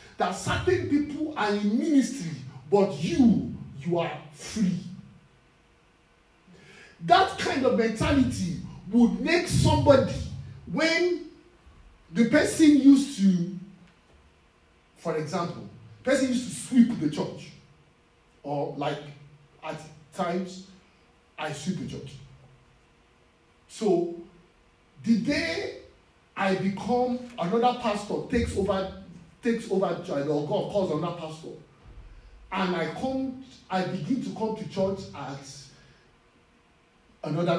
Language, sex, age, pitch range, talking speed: English, male, 50-69, 150-235 Hz, 105 wpm